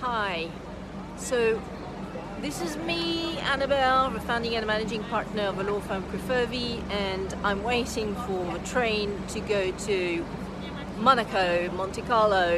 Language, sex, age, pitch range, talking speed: English, female, 40-59, 180-220 Hz, 135 wpm